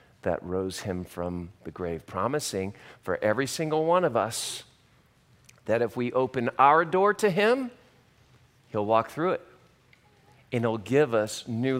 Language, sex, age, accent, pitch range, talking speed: English, male, 40-59, American, 105-155 Hz, 155 wpm